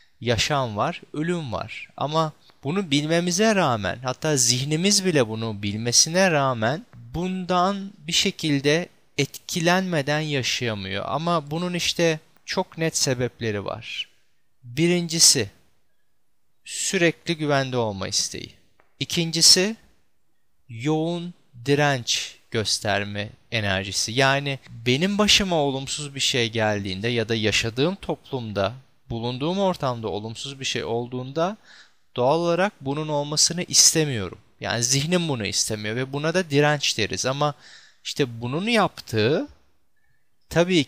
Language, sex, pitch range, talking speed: Turkish, male, 115-165 Hz, 105 wpm